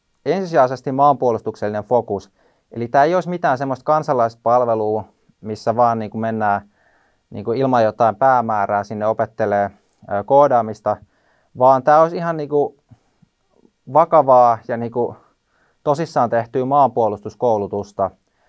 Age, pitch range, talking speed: 20-39, 105-130 Hz, 115 wpm